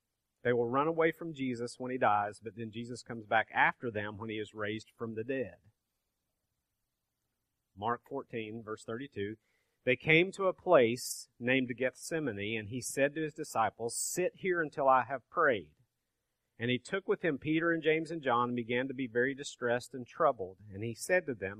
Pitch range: 115-140 Hz